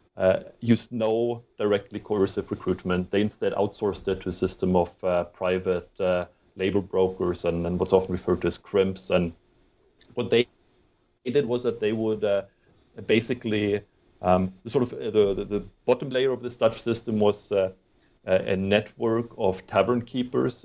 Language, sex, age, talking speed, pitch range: English, male, 30-49, 165 wpm, 95-110 Hz